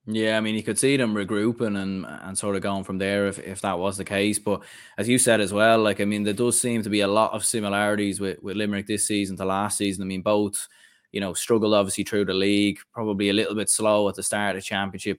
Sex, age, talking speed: male, 20-39, 270 wpm